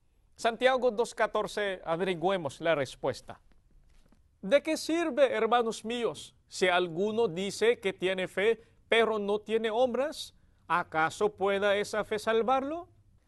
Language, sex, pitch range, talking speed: English, male, 195-265 Hz, 115 wpm